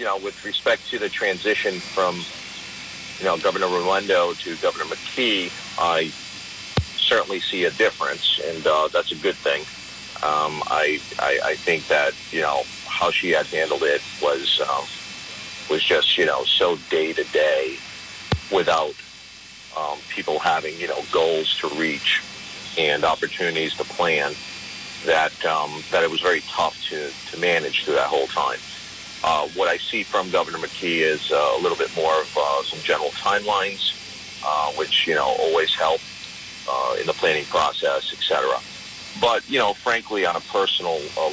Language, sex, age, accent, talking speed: English, male, 40-59, American, 165 wpm